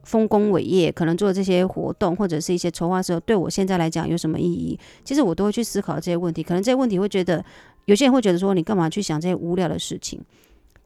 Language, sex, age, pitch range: Chinese, female, 30-49, 165-205 Hz